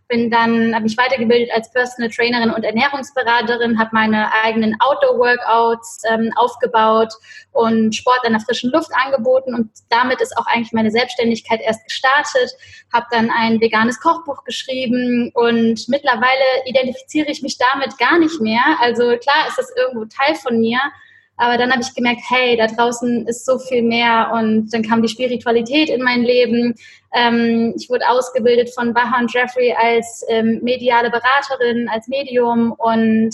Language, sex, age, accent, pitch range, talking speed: German, female, 10-29, German, 235-280 Hz, 160 wpm